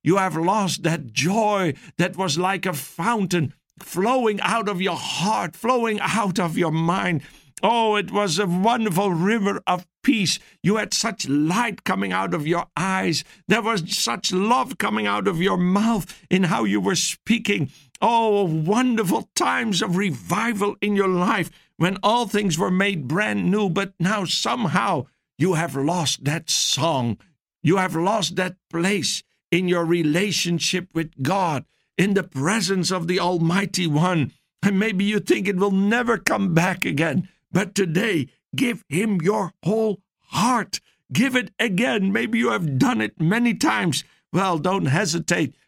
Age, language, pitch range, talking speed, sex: 60-79, English, 165-205 Hz, 160 wpm, male